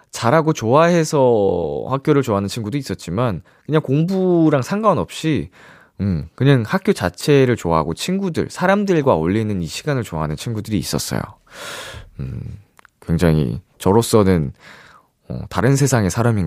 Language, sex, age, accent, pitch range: Korean, male, 20-39, native, 115-180 Hz